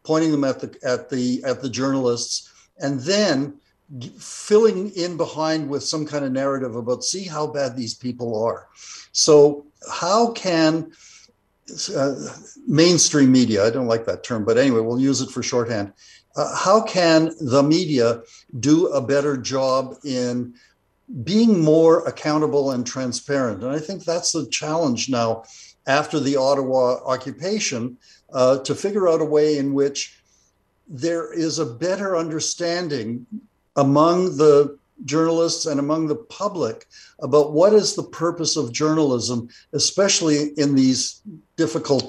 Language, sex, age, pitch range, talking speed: English, male, 60-79, 135-165 Hz, 145 wpm